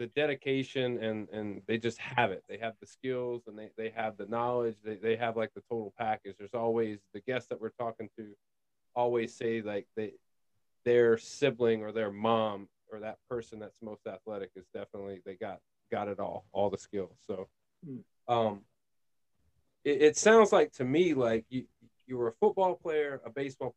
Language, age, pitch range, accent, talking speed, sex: English, 30-49, 110-125 Hz, American, 185 wpm, male